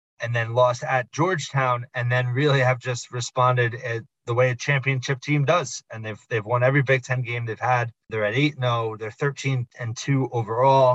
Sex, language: male, English